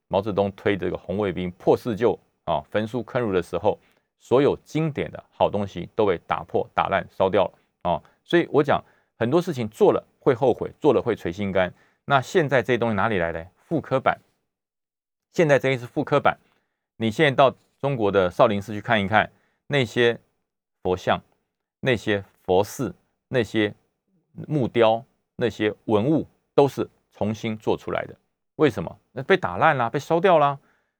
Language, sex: Chinese, male